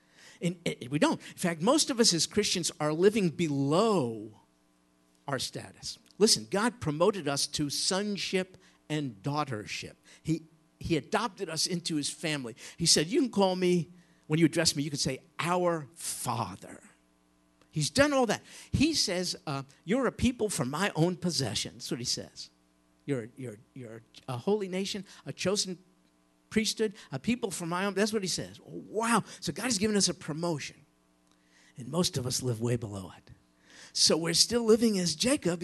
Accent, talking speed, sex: American, 175 wpm, male